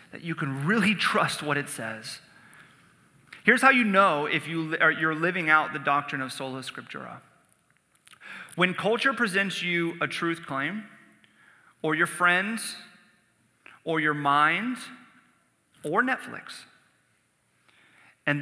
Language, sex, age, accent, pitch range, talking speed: English, male, 30-49, American, 145-180 Hz, 120 wpm